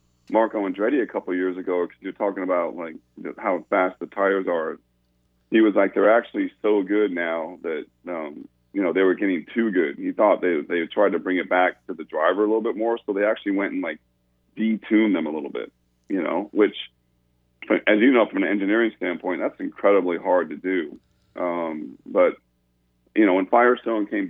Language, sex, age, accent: English, male, 40-59, American